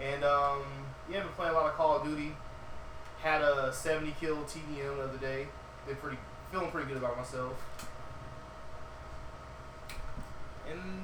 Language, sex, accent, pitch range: English, male, American, 125-155 Hz